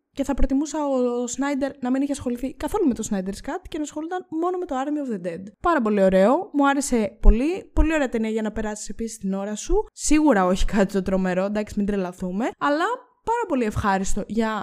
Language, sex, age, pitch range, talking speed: Greek, female, 20-39, 200-280 Hz, 215 wpm